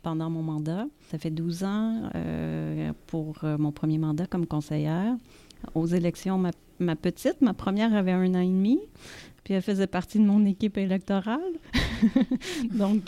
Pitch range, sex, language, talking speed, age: 160-195 Hz, female, French, 165 wpm, 30-49